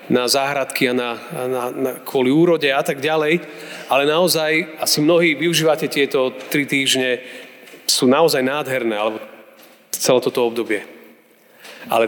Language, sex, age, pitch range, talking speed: Slovak, male, 30-49, 120-140 Hz, 125 wpm